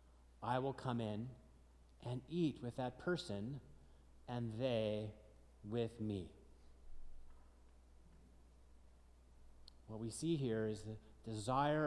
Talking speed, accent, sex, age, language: 100 wpm, American, male, 40-59, English